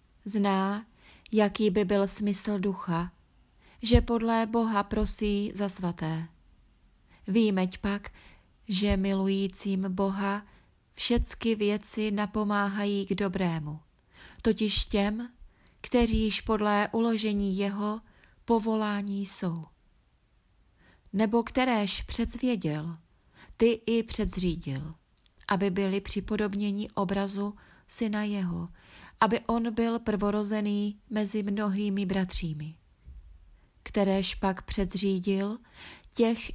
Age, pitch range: 30-49, 185-215 Hz